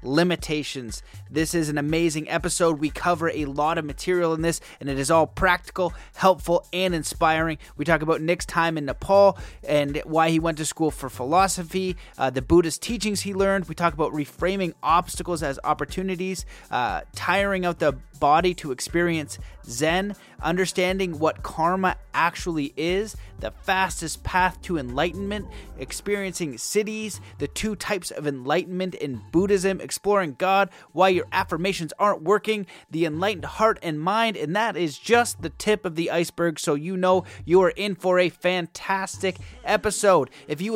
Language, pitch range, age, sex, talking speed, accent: English, 160-195 Hz, 30-49, male, 160 wpm, American